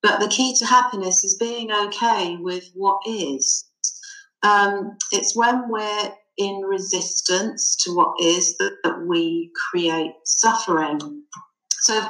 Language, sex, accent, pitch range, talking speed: English, female, British, 175-230 Hz, 135 wpm